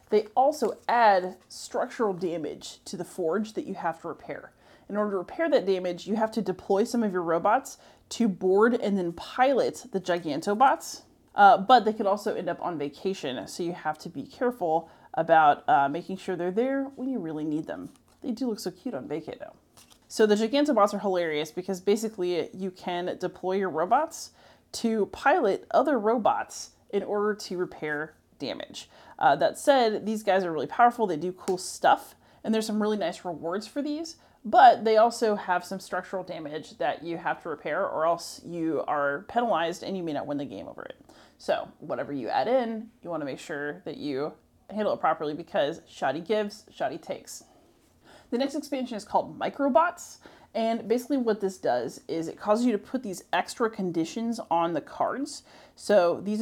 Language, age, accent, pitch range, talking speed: English, 30-49, American, 180-235 Hz, 190 wpm